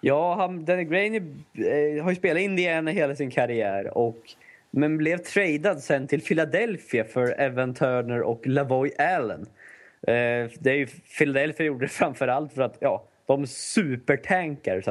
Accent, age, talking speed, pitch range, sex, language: native, 20-39, 155 wpm, 125-165 Hz, male, Swedish